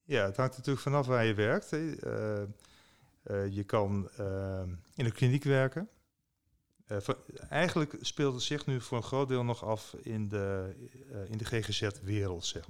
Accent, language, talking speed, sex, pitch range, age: Dutch, Dutch, 145 wpm, male, 105-130 Hz, 40-59